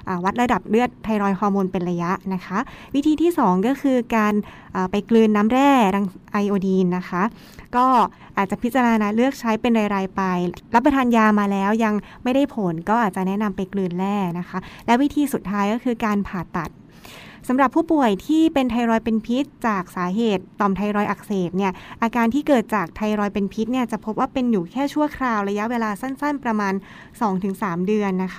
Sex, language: female, Thai